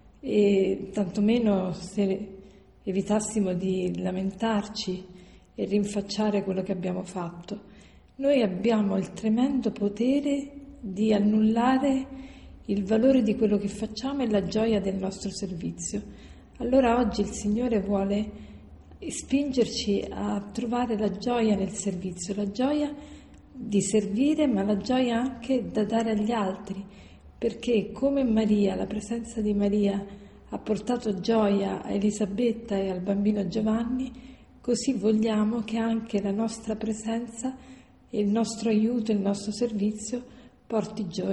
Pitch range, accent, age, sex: 200-235 Hz, native, 40-59, female